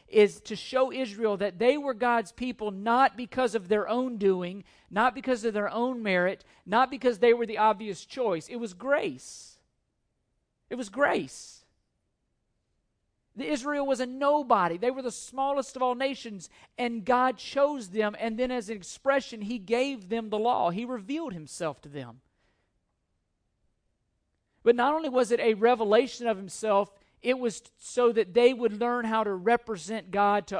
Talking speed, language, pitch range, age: 170 wpm, English, 195-250 Hz, 50-69